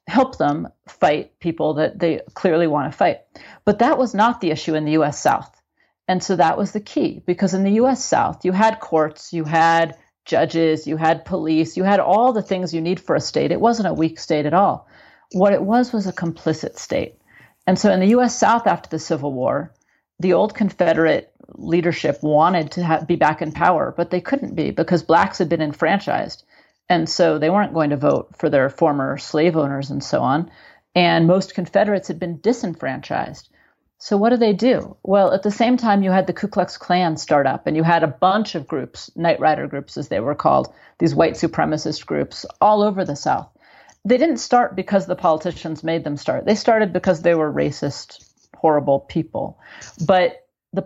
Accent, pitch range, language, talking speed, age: American, 160-205 Hz, English, 205 wpm, 40-59